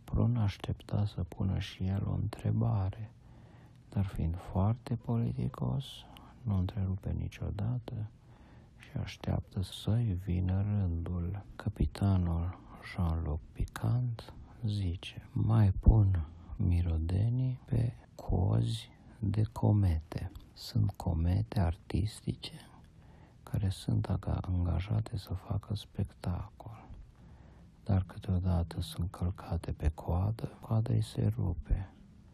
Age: 50-69